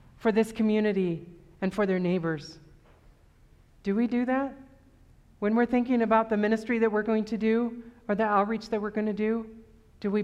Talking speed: 190 wpm